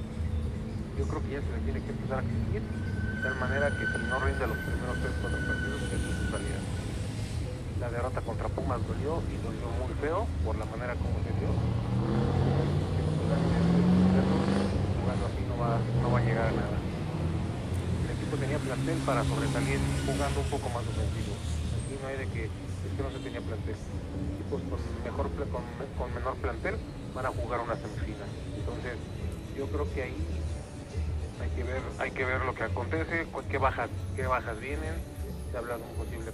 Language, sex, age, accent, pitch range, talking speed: Spanish, male, 40-59, Mexican, 85-110 Hz, 185 wpm